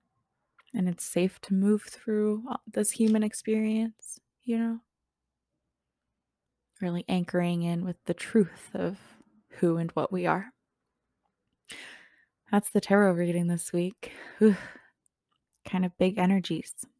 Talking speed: 115 wpm